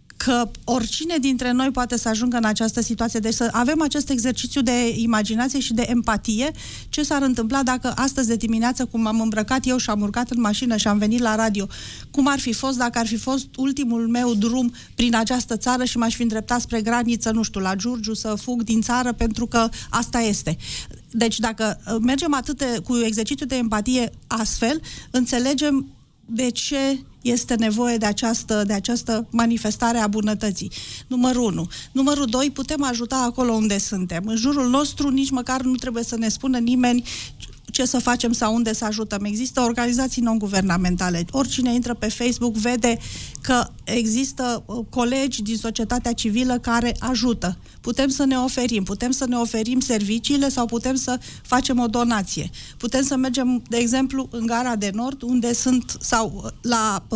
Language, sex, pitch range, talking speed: Romanian, female, 225-255 Hz, 175 wpm